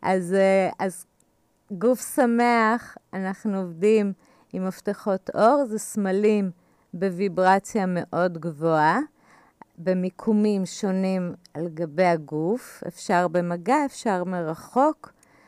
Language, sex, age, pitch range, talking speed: Hebrew, female, 30-49, 180-220 Hz, 90 wpm